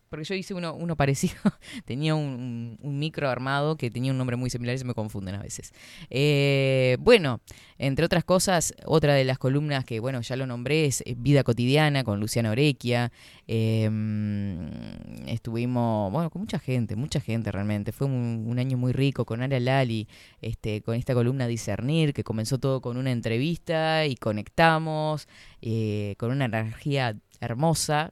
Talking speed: 175 wpm